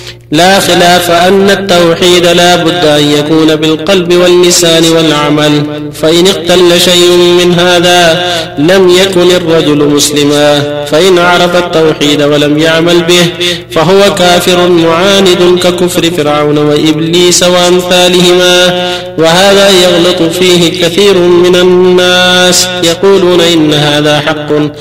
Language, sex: Arabic, male